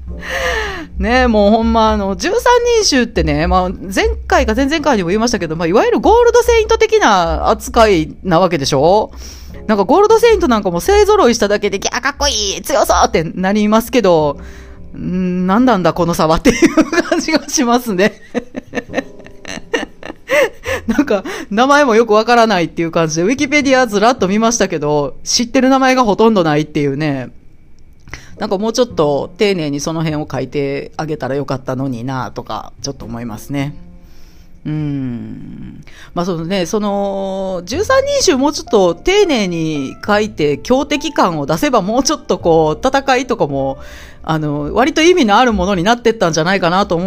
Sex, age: female, 40-59